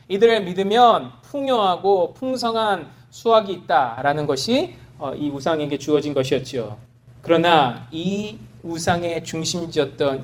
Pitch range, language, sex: 125-195 Hz, Korean, male